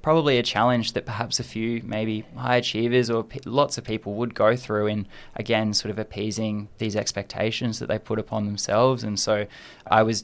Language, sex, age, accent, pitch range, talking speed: English, male, 20-39, Australian, 105-120 Hz, 200 wpm